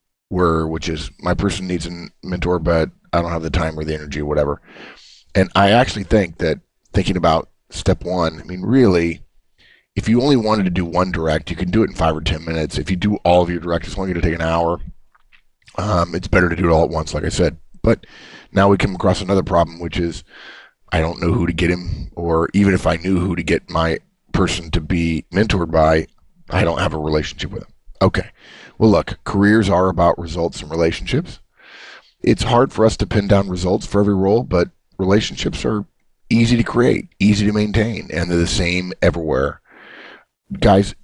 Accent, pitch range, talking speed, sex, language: American, 80-95 Hz, 215 wpm, male, English